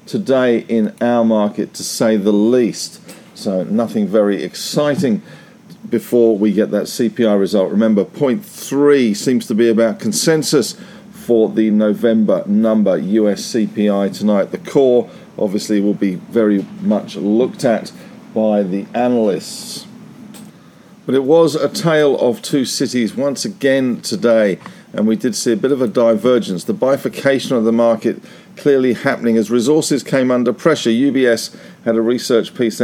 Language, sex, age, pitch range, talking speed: English, male, 50-69, 110-145 Hz, 150 wpm